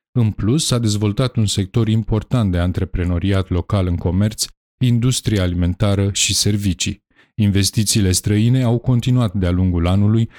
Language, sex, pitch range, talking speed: Romanian, male, 95-115 Hz, 135 wpm